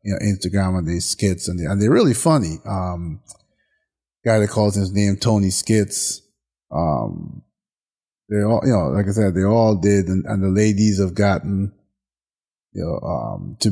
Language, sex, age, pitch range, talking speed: English, male, 30-49, 95-115 Hz, 180 wpm